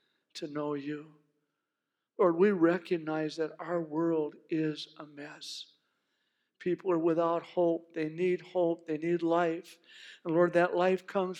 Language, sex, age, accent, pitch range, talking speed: English, male, 60-79, American, 160-190 Hz, 140 wpm